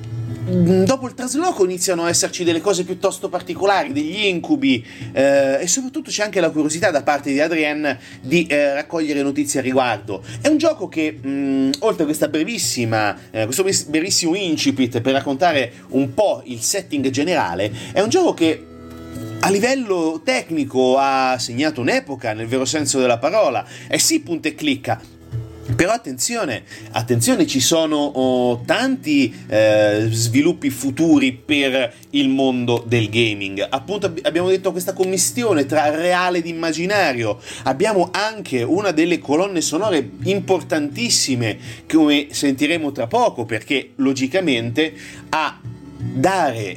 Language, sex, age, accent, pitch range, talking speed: Italian, male, 30-49, native, 120-185 Hz, 135 wpm